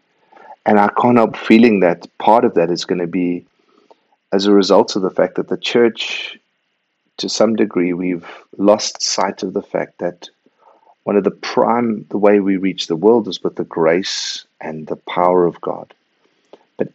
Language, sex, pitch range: English, male, 85-105 Hz